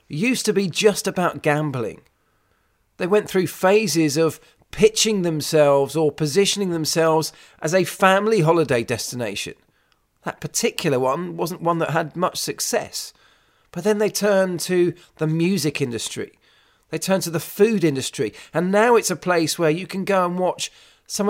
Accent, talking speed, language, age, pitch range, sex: British, 160 wpm, English, 40-59, 155-205 Hz, male